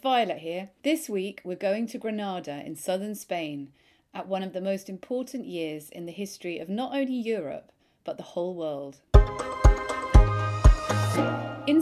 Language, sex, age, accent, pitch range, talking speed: English, female, 30-49, British, 160-225 Hz, 150 wpm